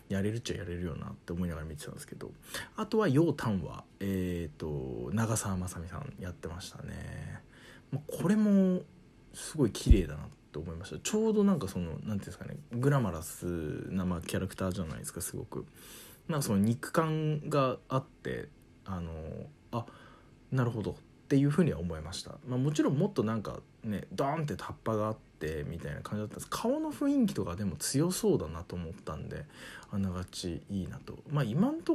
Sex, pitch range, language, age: male, 90-145 Hz, Japanese, 20-39